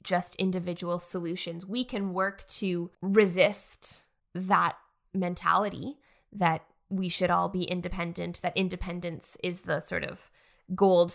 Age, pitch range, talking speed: 10-29, 175-205 Hz, 125 wpm